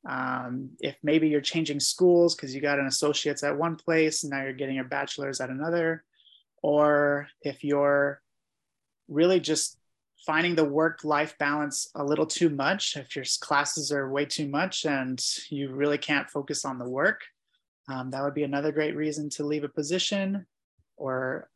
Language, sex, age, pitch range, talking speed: English, male, 30-49, 140-165 Hz, 175 wpm